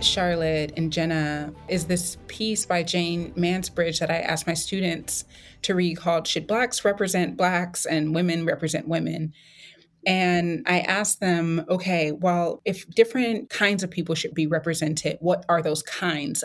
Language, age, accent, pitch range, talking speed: English, 20-39, American, 160-180 Hz, 155 wpm